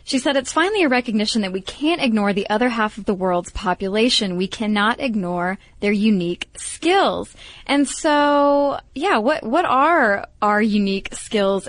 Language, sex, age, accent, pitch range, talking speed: English, female, 20-39, American, 200-275 Hz, 165 wpm